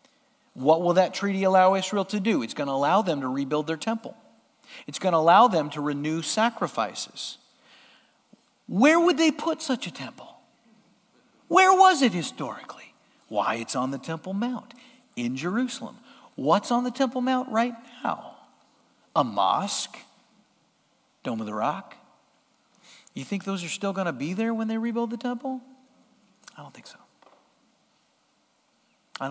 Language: English